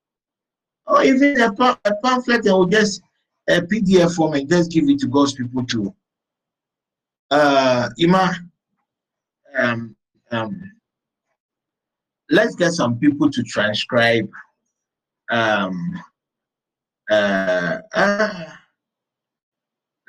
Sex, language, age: male, English, 50-69